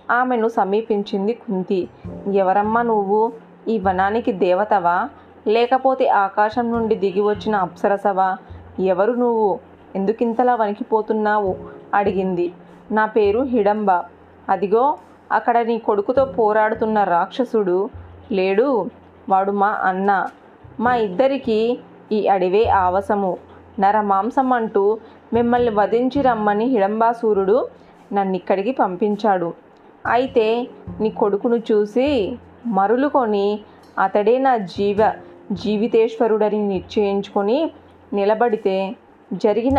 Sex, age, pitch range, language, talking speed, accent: female, 20-39, 195-235 Hz, Telugu, 85 wpm, native